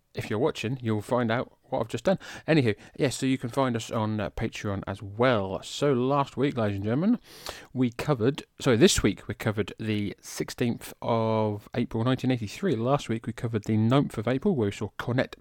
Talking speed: 205 wpm